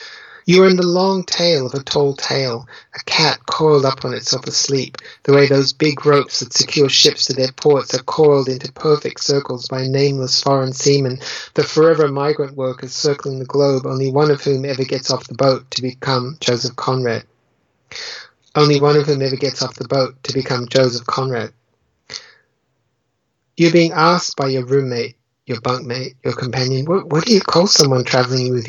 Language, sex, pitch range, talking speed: English, male, 130-160 Hz, 180 wpm